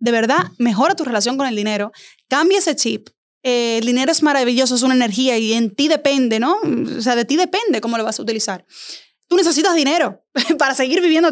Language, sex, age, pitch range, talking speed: Spanish, female, 20-39, 235-305 Hz, 210 wpm